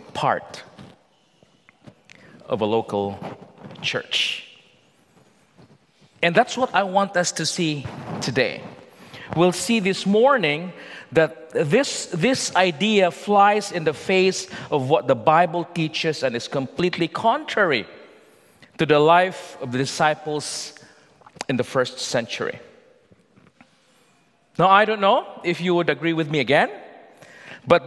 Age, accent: 40-59, Filipino